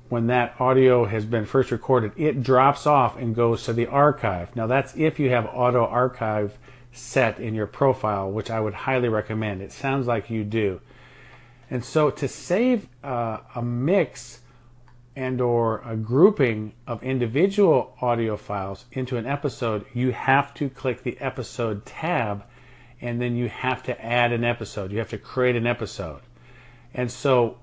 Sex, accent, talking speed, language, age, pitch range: male, American, 165 wpm, English, 50-69, 115-135 Hz